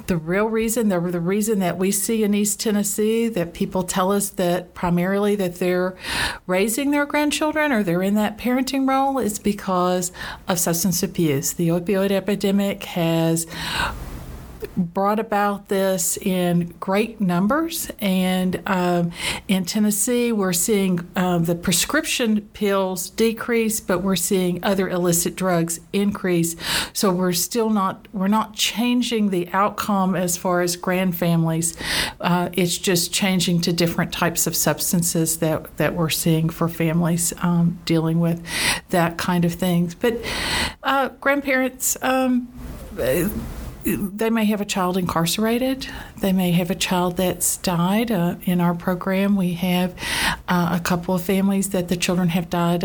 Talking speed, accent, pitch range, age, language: 150 wpm, American, 175-205 Hz, 50-69, English